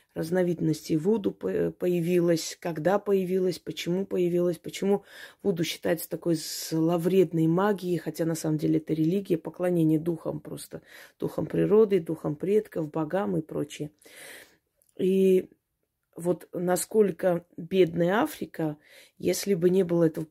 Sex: female